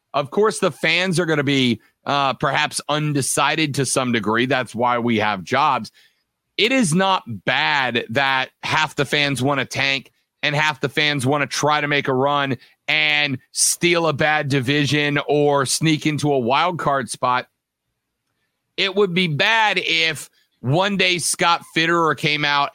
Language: English